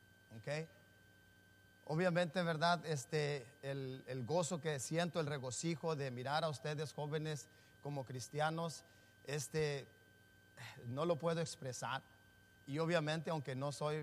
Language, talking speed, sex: English, 120 wpm, male